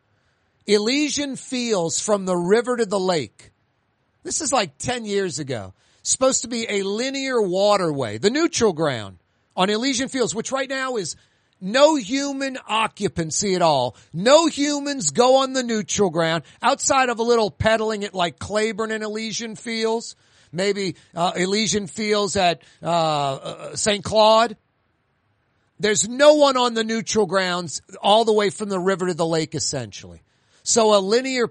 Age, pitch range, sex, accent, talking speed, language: 40-59, 155-230 Hz, male, American, 155 wpm, English